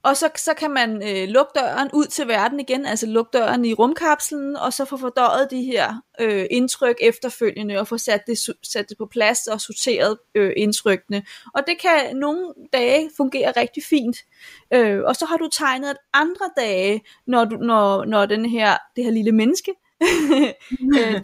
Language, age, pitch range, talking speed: Danish, 30-49, 220-280 Hz, 185 wpm